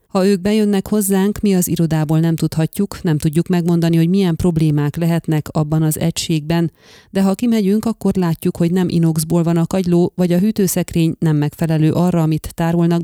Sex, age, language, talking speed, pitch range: female, 30-49, Hungarian, 175 wpm, 155-185 Hz